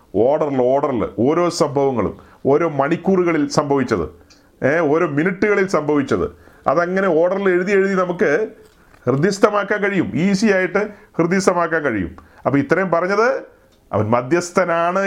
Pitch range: 175-225 Hz